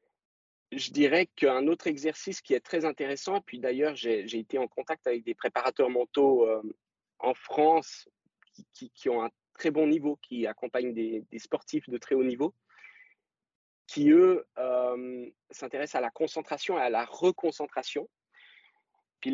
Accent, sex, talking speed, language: French, male, 165 wpm, French